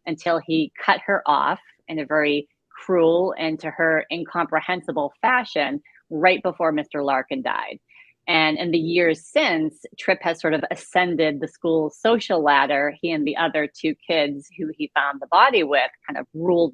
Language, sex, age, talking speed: English, female, 30-49, 170 wpm